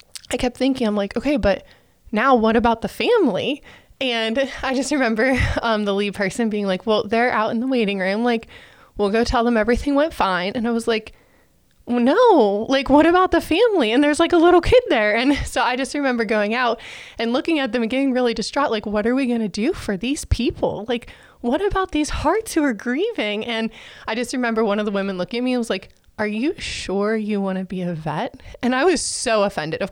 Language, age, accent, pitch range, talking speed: English, 20-39, American, 200-270 Hz, 230 wpm